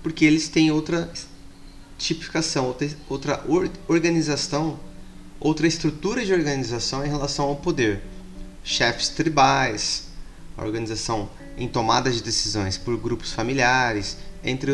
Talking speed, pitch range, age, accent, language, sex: 105 wpm, 100-145 Hz, 20-39, Brazilian, Portuguese, male